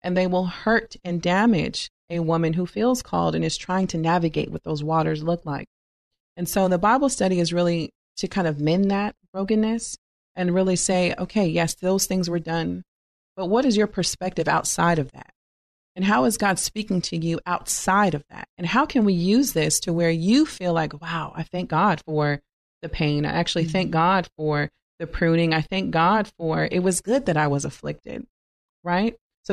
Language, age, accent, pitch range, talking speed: English, 30-49, American, 165-195 Hz, 200 wpm